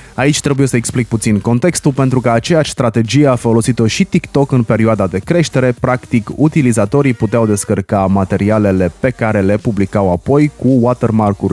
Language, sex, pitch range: Romanian, male, 100-130 Hz